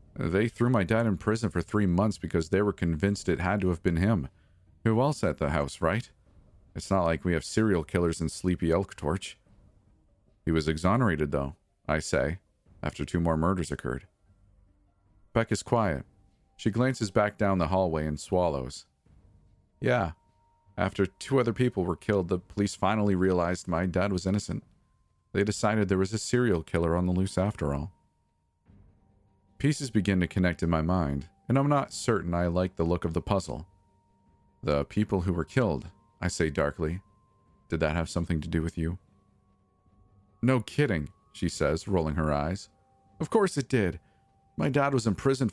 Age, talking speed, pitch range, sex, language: 40-59, 175 wpm, 85-105 Hz, male, English